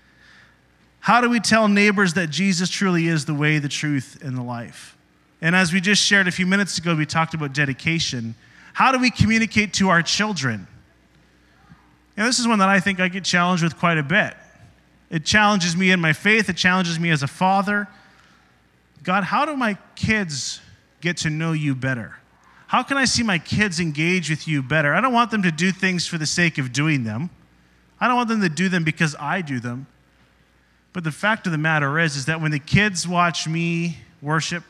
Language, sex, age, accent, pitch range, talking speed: English, male, 30-49, American, 130-185 Hz, 210 wpm